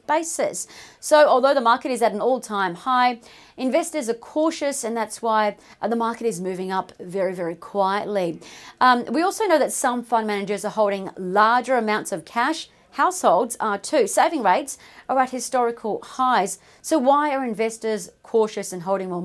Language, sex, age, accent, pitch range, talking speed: English, female, 40-59, Australian, 210-265 Hz, 170 wpm